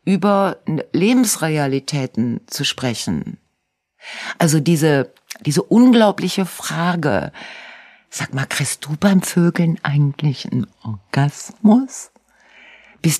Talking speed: 85 wpm